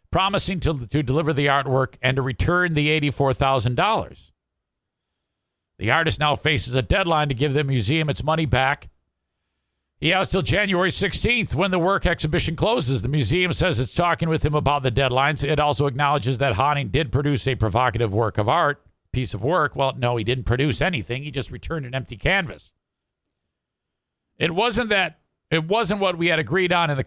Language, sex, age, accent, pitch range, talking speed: English, male, 50-69, American, 110-165 Hz, 185 wpm